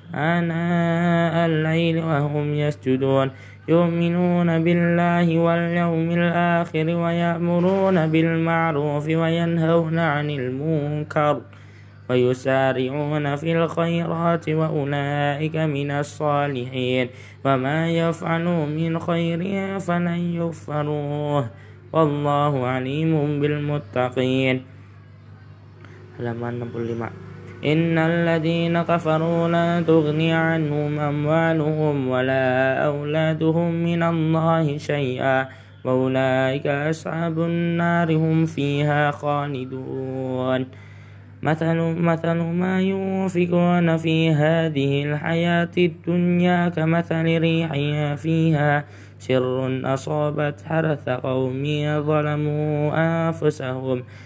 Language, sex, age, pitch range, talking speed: Indonesian, male, 20-39, 130-165 Hz, 65 wpm